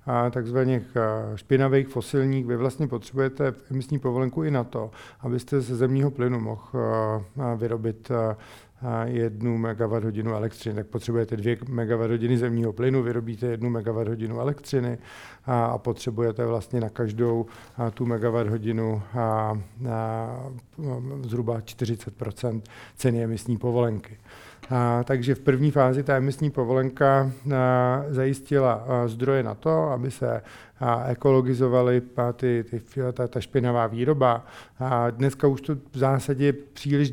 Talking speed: 105 wpm